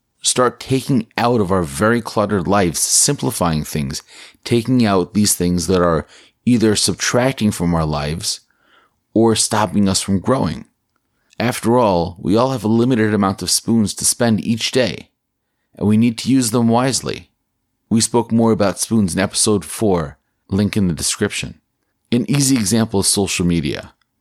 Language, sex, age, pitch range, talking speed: English, male, 30-49, 90-115 Hz, 160 wpm